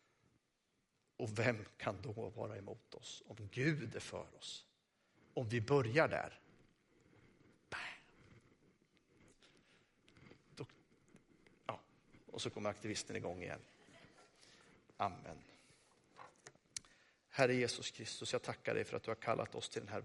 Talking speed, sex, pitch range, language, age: 115 wpm, male, 115-135 Hz, Swedish, 50-69